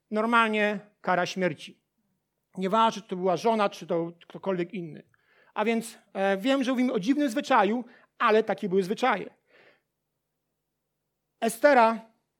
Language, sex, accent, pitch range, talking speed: Polish, male, native, 205-255 Hz, 120 wpm